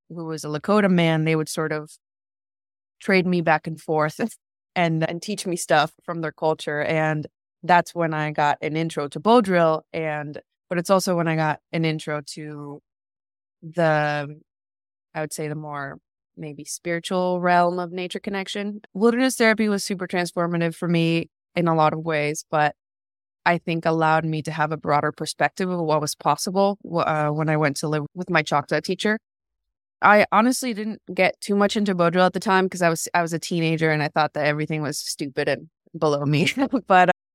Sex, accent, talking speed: female, American, 190 wpm